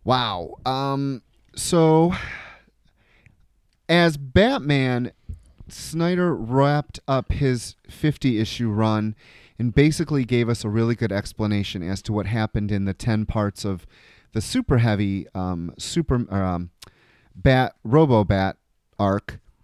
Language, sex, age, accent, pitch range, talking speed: English, male, 30-49, American, 100-125 Hz, 110 wpm